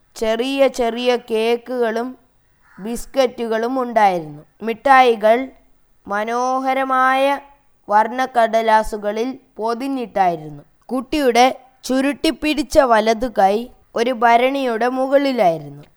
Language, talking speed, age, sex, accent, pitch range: Malayalam, 55 wpm, 20-39, female, native, 215-250 Hz